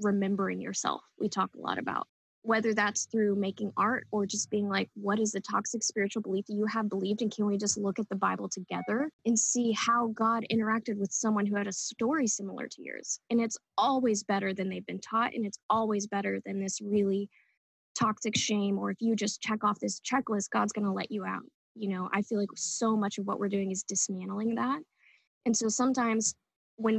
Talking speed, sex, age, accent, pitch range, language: 220 wpm, female, 10-29, American, 200-225 Hz, English